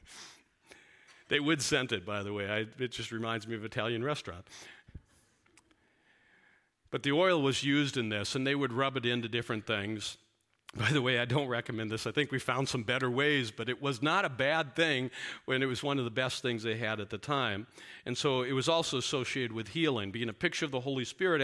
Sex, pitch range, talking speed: male, 105-135 Hz, 220 wpm